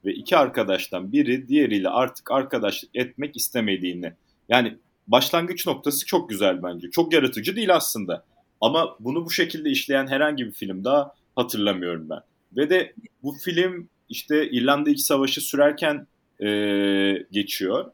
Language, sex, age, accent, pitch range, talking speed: Turkish, male, 30-49, native, 110-165 Hz, 135 wpm